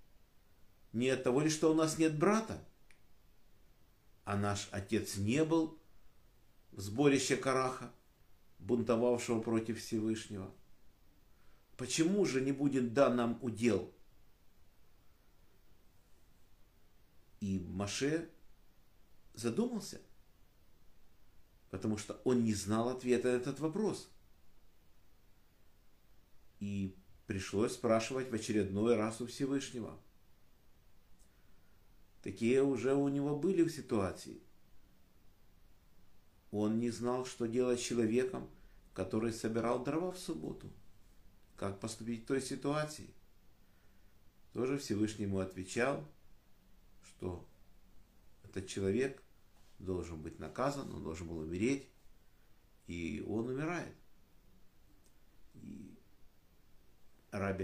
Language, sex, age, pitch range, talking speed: Russian, male, 50-69, 95-125 Hz, 95 wpm